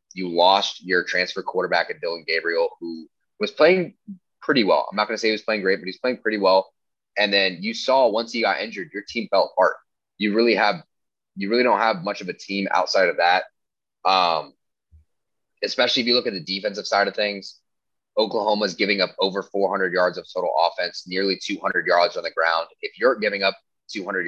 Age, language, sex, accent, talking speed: 20-39, English, male, American, 210 wpm